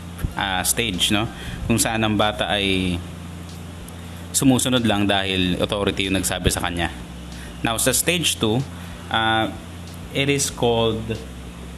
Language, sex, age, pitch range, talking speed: Filipino, male, 20-39, 85-115 Hz, 120 wpm